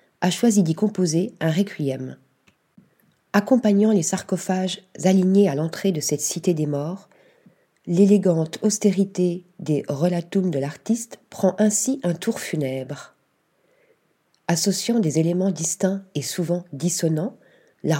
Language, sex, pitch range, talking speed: French, female, 160-205 Hz, 120 wpm